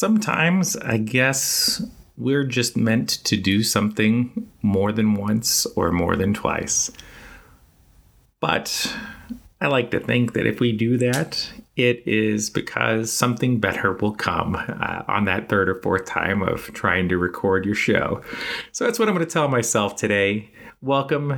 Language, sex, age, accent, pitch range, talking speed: English, male, 30-49, American, 105-125 Hz, 155 wpm